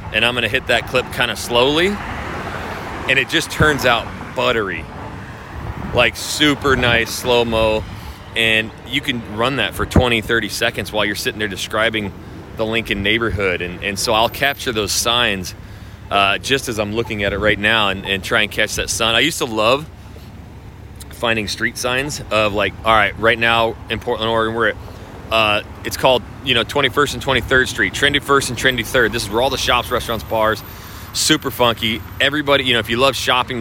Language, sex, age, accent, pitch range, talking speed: English, male, 30-49, American, 100-130 Hz, 195 wpm